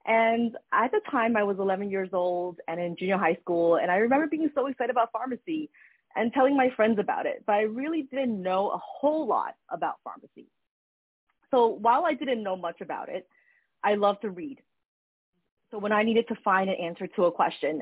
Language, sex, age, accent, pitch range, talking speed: English, female, 30-49, American, 175-230 Hz, 205 wpm